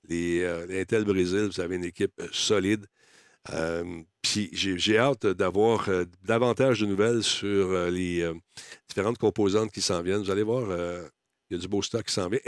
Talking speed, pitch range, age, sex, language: 190 wpm, 95-155 Hz, 60-79, male, French